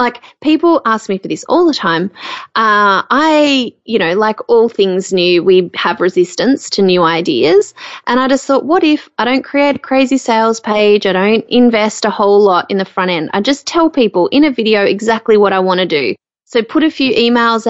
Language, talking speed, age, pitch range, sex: English, 215 wpm, 20-39, 195-255 Hz, female